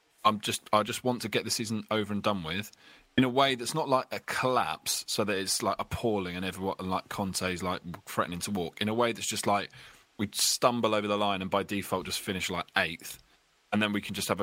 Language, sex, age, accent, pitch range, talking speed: English, male, 20-39, British, 90-110 Hz, 250 wpm